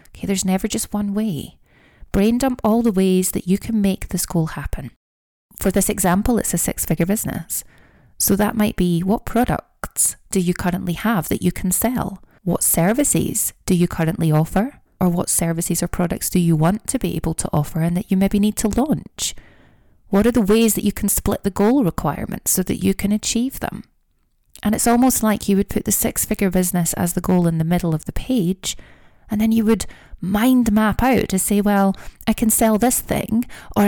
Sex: female